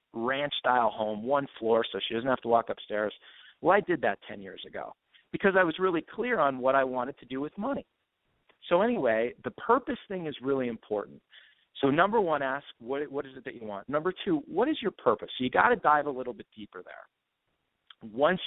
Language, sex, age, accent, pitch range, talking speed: English, male, 40-59, American, 110-140 Hz, 220 wpm